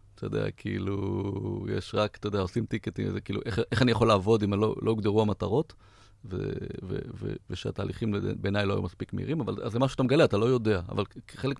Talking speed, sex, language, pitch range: 200 wpm, male, Hebrew, 100-115 Hz